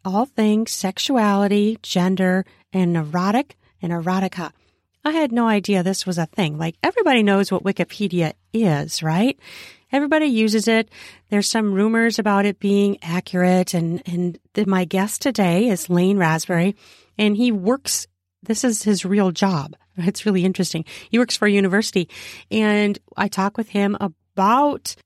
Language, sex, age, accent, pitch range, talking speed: English, female, 40-59, American, 180-235 Hz, 150 wpm